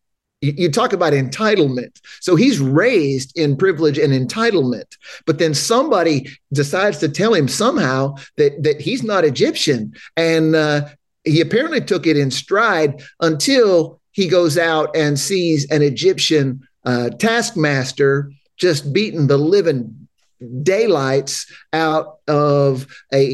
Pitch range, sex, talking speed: 140-180 Hz, male, 130 wpm